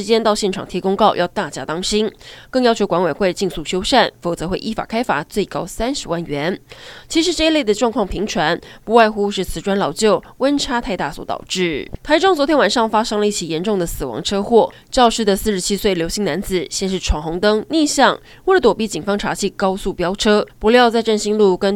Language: Chinese